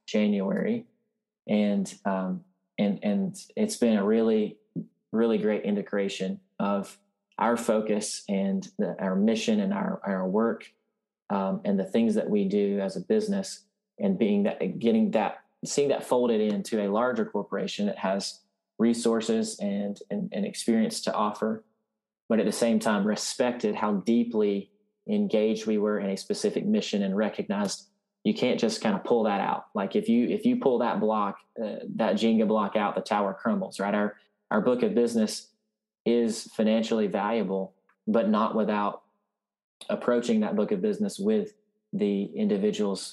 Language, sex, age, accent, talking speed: English, male, 30-49, American, 160 wpm